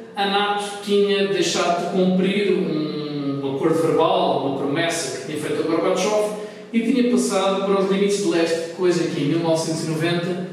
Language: Portuguese